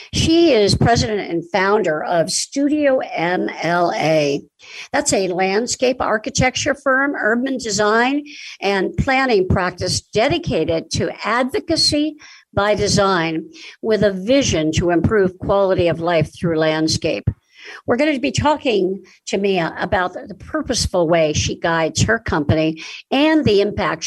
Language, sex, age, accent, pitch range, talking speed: English, female, 60-79, American, 175-265 Hz, 125 wpm